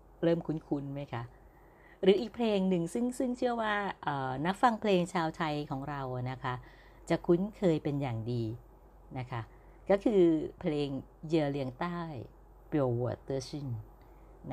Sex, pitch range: female, 125-170 Hz